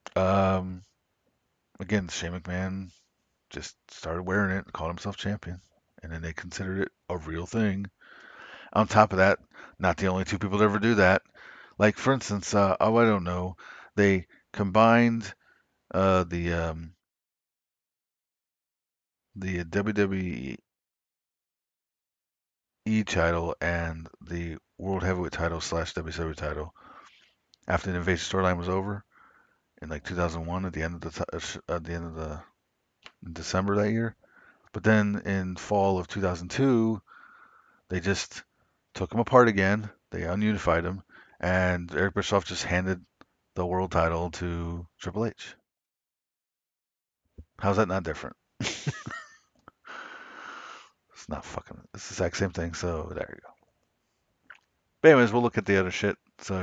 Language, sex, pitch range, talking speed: English, male, 85-100 Hz, 140 wpm